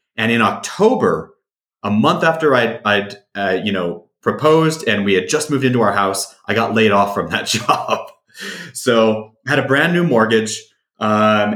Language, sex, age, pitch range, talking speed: English, male, 30-49, 110-150 Hz, 180 wpm